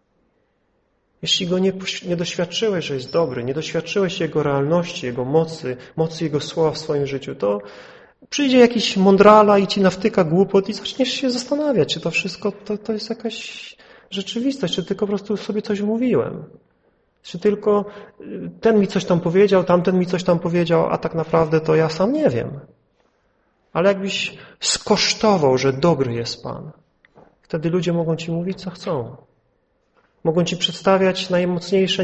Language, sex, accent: Polish, male, native